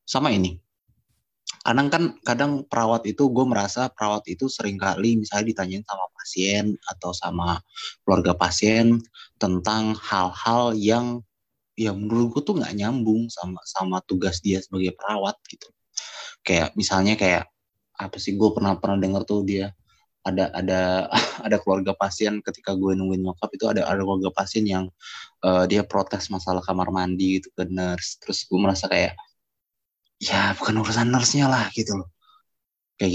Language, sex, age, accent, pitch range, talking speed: Indonesian, male, 20-39, native, 95-115 Hz, 145 wpm